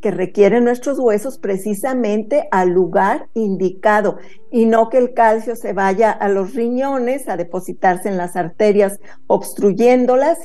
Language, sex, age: Spanish, female, 50-69